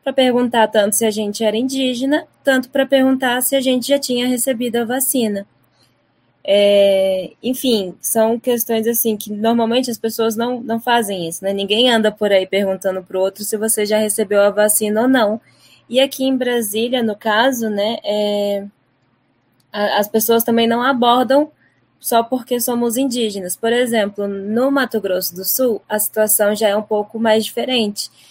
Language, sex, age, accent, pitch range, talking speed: Portuguese, female, 10-29, Brazilian, 210-245 Hz, 175 wpm